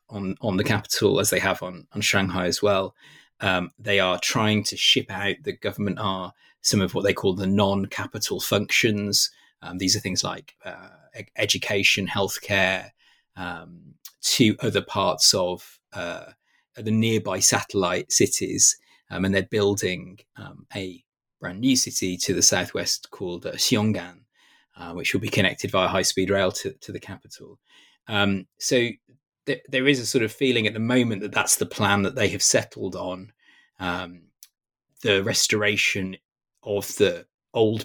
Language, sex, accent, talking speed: English, male, British, 160 wpm